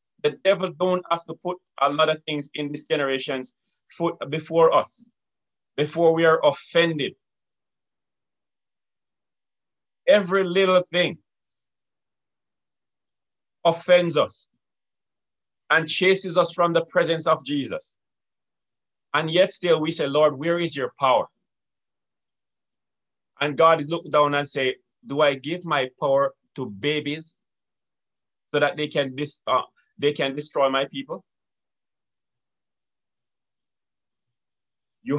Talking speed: 120 wpm